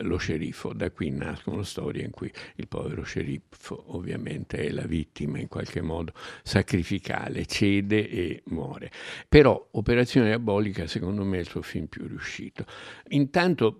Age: 60-79